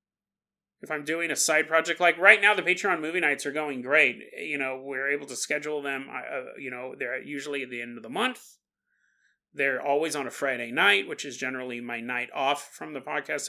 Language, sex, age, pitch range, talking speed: English, male, 30-49, 135-190 Hz, 215 wpm